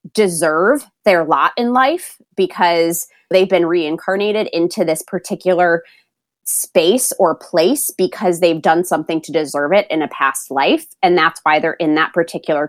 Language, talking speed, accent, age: English, 155 wpm, American, 20-39